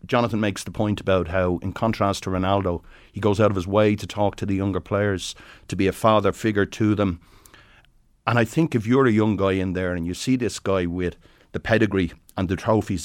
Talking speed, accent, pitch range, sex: 230 wpm, Irish, 90-110 Hz, male